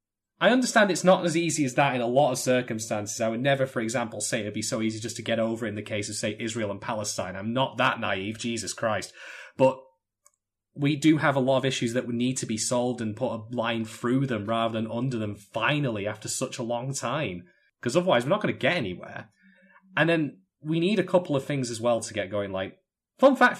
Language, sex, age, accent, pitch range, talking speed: English, male, 20-39, British, 110-155 Hz, 240 wpm